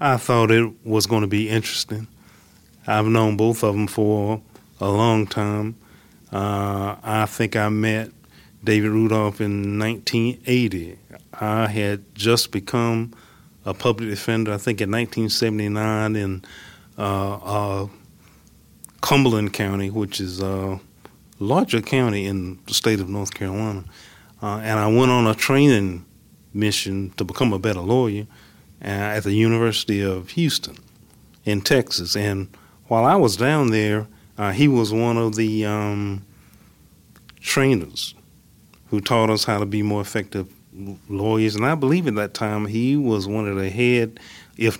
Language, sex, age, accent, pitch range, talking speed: English, male, 30-49, American, 100-115 Hz, 145 wpm